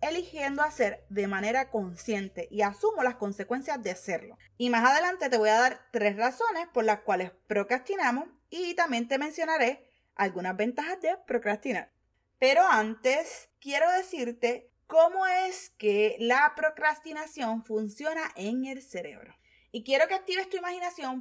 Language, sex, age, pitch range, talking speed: Spanish, female, 20-39, 215-315 Hz, 145 wpm